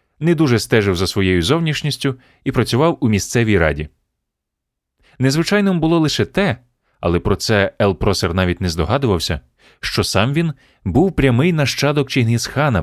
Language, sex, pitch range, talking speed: Ukrainian, male, 90-135 Hz, 135 wpm